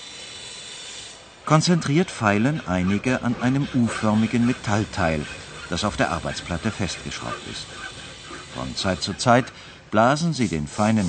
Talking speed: 115 wpm